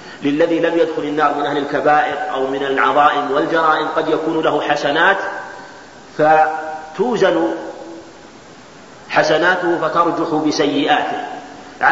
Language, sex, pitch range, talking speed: Arabic, male, 150-180 Hz, 95 wpm